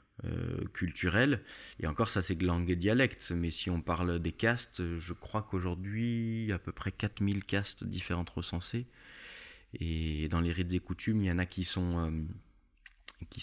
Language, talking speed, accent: French, 175 wpm, French